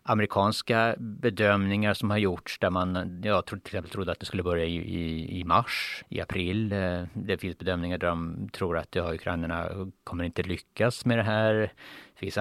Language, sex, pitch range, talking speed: Swedish, male, 90-115 Hz, 180 wpm